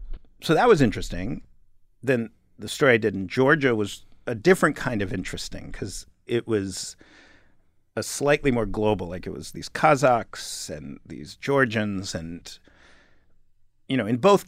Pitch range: 95-125 Hz